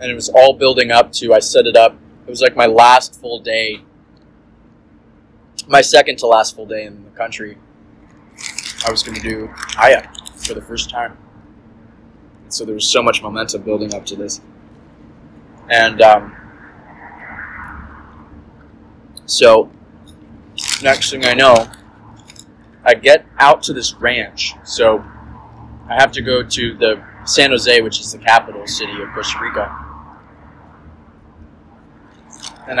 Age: 20-39